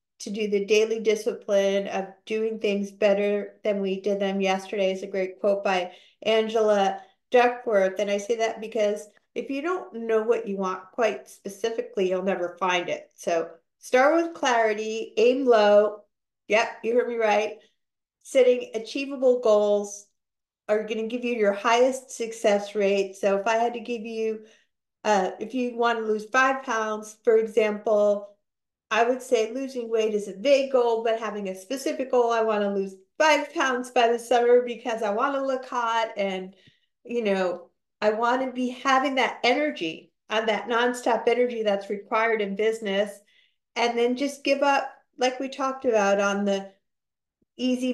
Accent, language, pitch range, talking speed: American, English, 205-245 Hz, 170 wpm